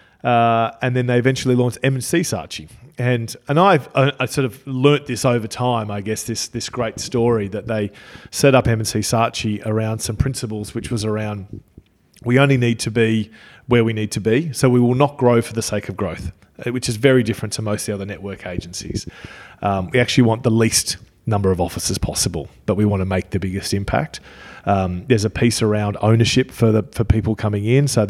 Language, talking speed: English, 210 wpm